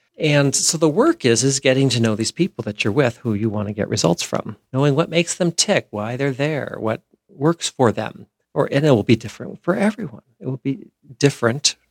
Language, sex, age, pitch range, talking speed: English, male, 50-69, 110-140 Hz, 225 wpm